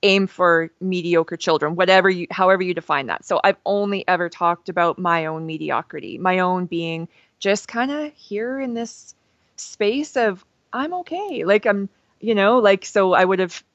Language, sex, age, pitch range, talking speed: English, female, 20-39, 185-235 Hz, 180 wpm